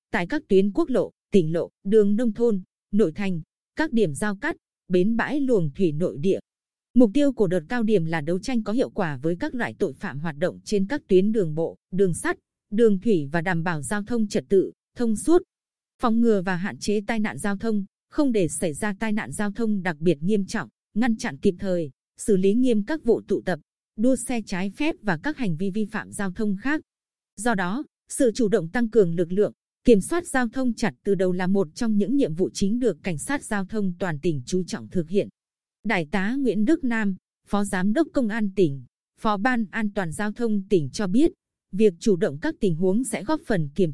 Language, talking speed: Vietnamese, 230 wpm